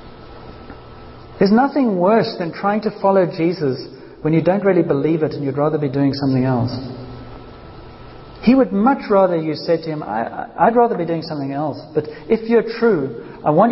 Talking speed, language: 180 wpm, English